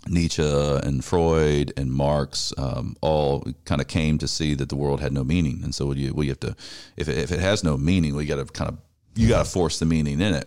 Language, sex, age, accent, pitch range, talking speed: English, male, 40-59, American, 75-90 Hz, 240 wpm